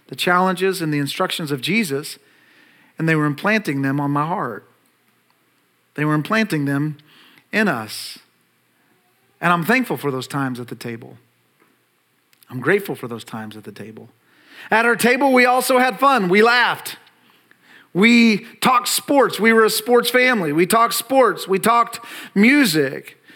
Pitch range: 170-230 Hz